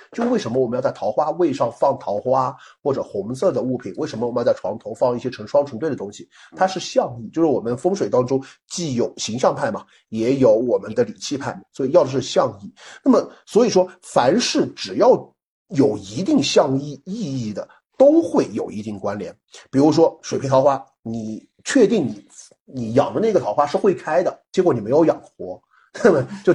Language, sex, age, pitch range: Chinese, male, 50-69, 130-215 Hz